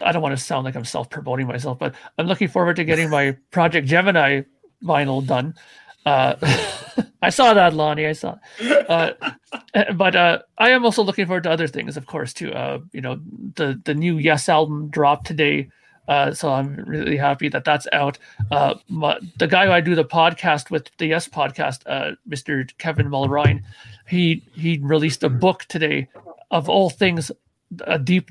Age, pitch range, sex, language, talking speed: 40-59, 145-175 Hz, male, English, 185 wpm